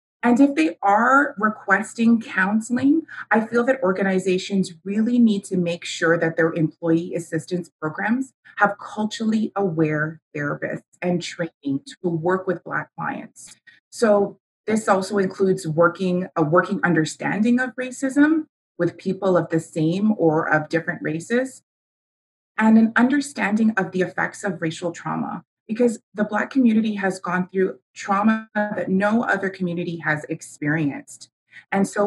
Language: English